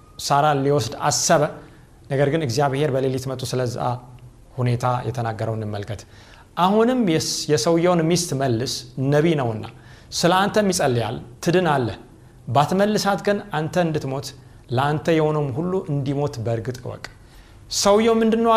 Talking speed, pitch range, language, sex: 115 wpm, 120-165 Hz, Amharic, male